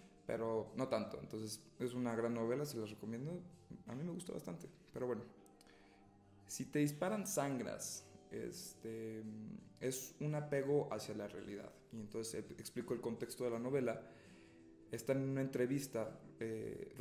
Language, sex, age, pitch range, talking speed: Spanish, male, 20-39, 110-130 Hz, 150 wpm